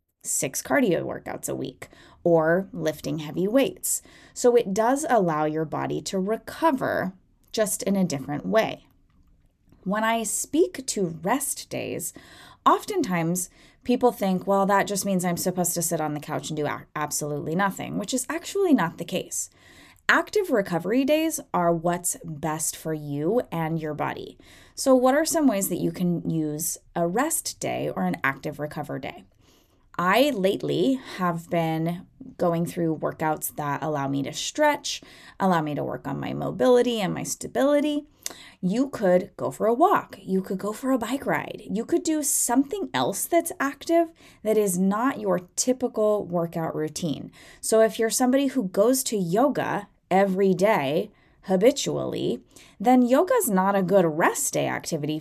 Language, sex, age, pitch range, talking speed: English, female, 20-39, 165-255 Hz, 160 wpm